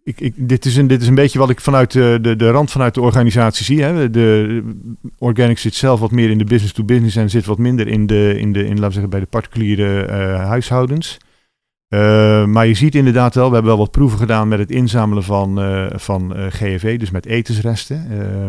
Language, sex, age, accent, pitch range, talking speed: Dutch, male, 50-69, Dutch, 100-115 Hz, 225 wpm